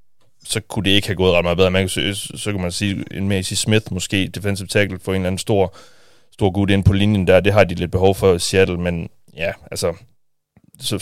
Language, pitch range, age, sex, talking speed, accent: Danish, 90-100 Hz, 30-49, male, 240 wpm, native